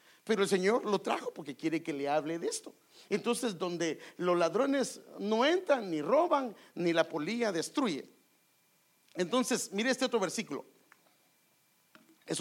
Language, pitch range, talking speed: English, 180-255 Hz, 145 wpm